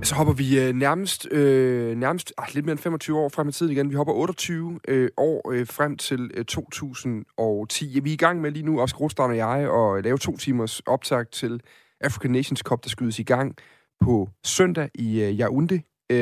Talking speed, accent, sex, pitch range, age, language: 205 wpm, native, male, 115-145 Hz, 30-49, Danish